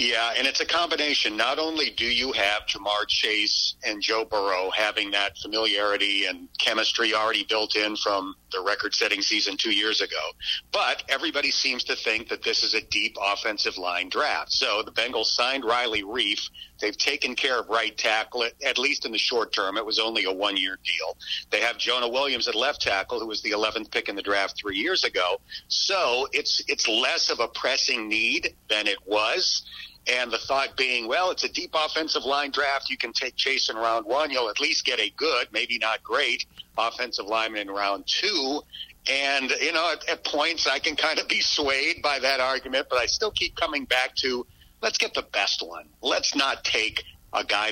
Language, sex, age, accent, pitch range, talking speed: English, male, 50-69, American, 105-150 Hz, 200 wpm